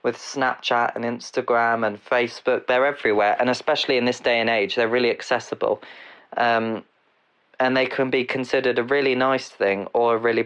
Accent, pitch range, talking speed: British, 110-130 Hz, 180 wpm